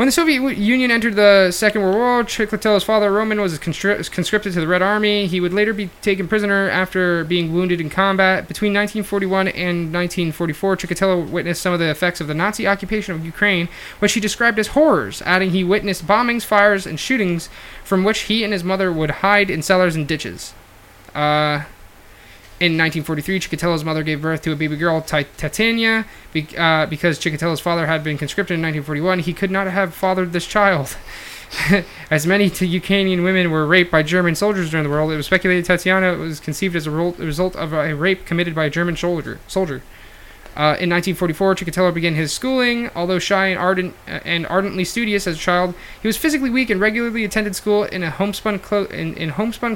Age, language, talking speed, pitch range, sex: 20-39, English, 200 wpm, 165-205 Hz, male